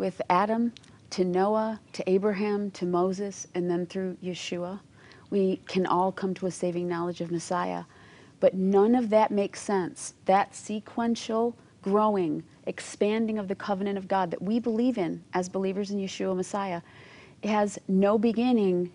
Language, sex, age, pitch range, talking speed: English, female, 40-59, 180-210 Hz, 155 wpm